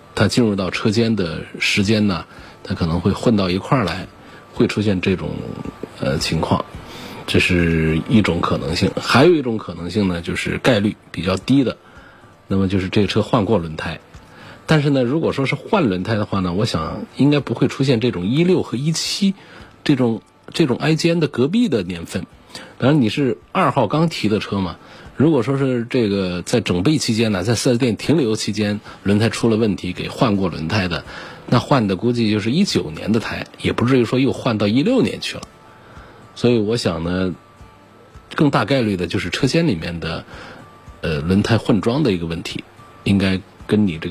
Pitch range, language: 90-120 Hz, Chinese